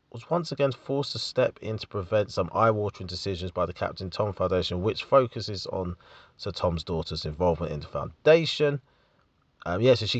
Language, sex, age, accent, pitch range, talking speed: English, male, 30-49, British, 90-135 Hz, 180 wpm